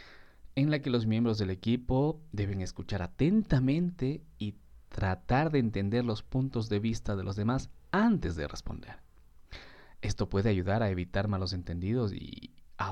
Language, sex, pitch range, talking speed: Spanish, male, 90-125 Hz, 155 wpm